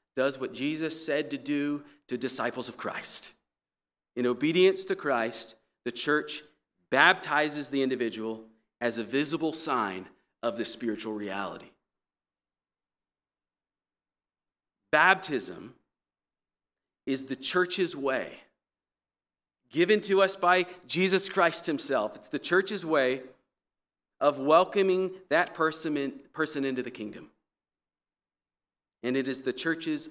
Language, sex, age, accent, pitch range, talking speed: English, male, 40-59, American, 115-155 Hz, 110 wpm